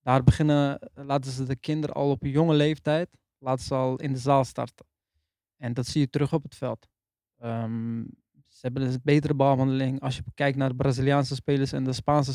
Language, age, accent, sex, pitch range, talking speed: Dutch, 20-39, Dutch, male, 125-145 Hz, 205 wpm